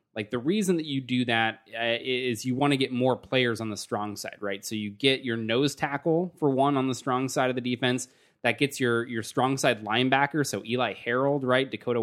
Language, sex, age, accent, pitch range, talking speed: English, male, 20-39, American, 110-125 Hz, 235 wpm